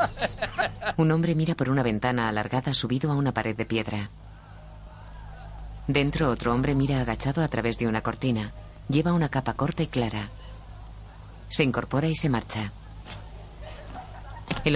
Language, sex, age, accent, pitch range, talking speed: Spanish, female, 30-49, Spanish, 105-140 Hz, 140 wpm